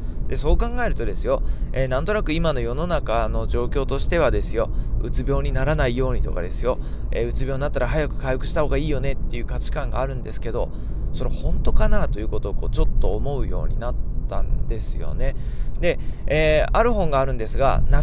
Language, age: Japanese, 20-39